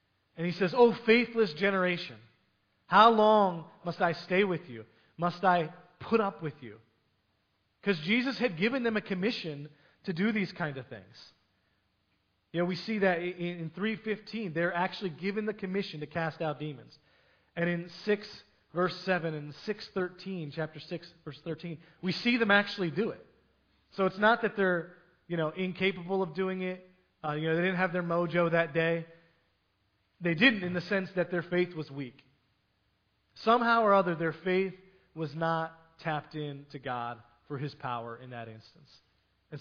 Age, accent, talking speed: 30-49, American, 175 wpm